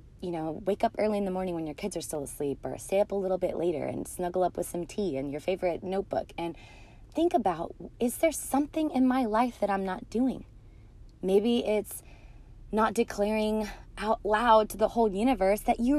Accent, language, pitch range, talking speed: American, English, 205-260 Hz, 210 wpm